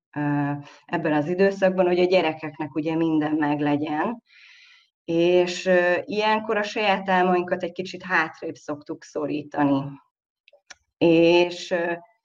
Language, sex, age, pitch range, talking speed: Hungarian, female, 30-49, 150-190 Hz, 100 wpm